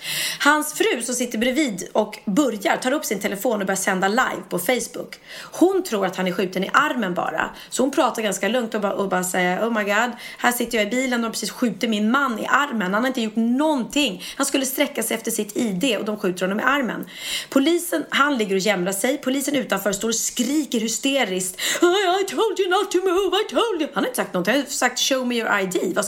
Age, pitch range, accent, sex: 30-49, 195-265 Hz, native, female